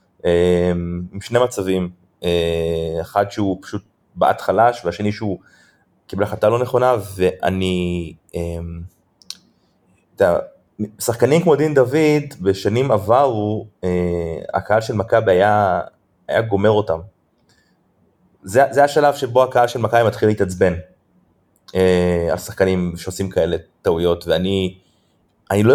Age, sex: 30-49, male